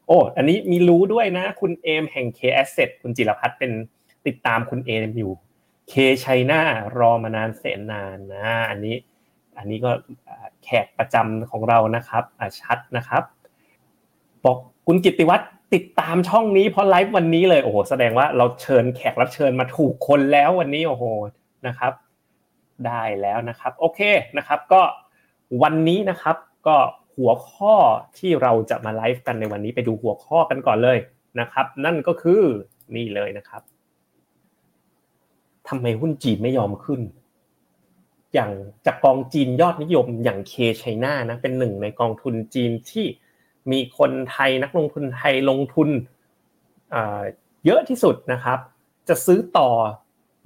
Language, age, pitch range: Thai, 30-49, 115-155 Hz